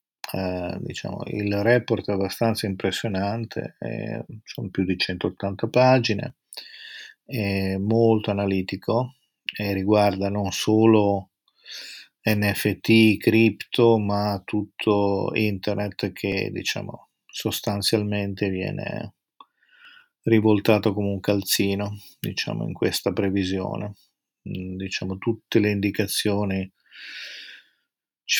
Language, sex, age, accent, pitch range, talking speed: Italian, male, 40-59, native, 100-115 Hz, 85 wpm